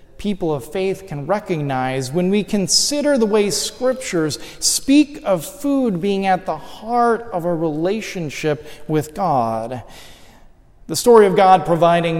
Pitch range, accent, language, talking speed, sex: 150-200 Hz, American, English, 140 wpm, male